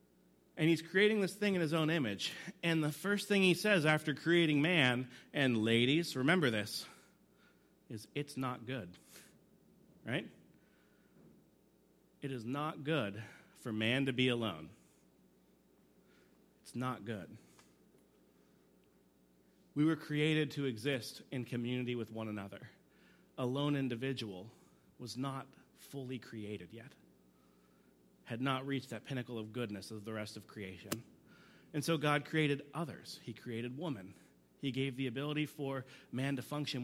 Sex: male